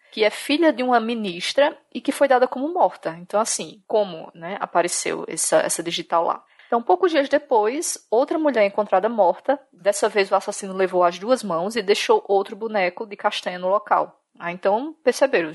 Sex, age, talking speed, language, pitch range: female, 20-39, 185 wpm, Portuguese, 175-235 Hz